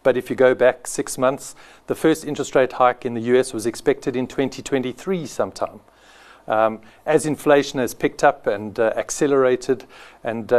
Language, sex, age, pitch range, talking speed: English, male, 50-69, 115-140 Hz, 170 wpm